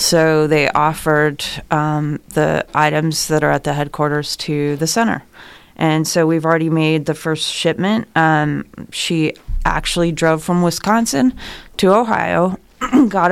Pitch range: 155-175 Hz